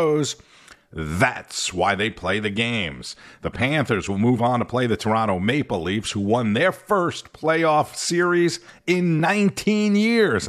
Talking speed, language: 150 wpm, English